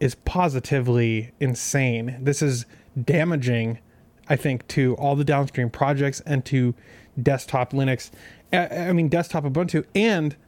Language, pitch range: English, 135-175 Hz